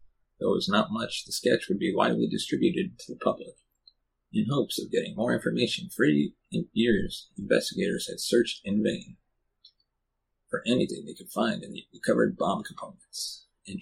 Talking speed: 165 wpm